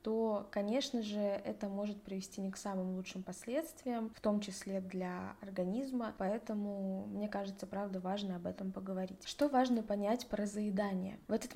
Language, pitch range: Russian, 195-235 Hz